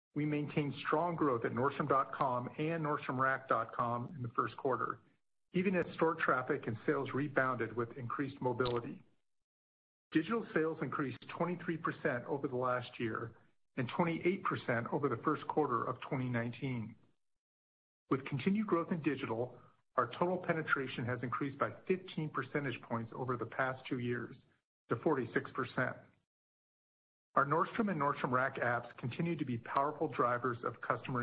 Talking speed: 140 wpm